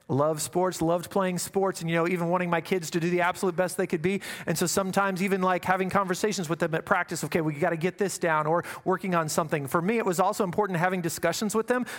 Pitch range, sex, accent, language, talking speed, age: 155-195 Hz, male, American, English, 260 wpm, 30-49